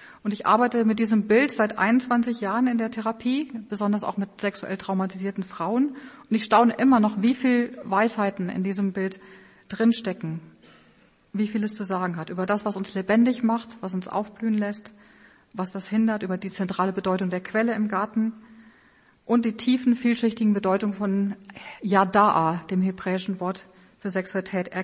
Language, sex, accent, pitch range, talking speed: German, female, German, 195-230 Hz, 165 wpm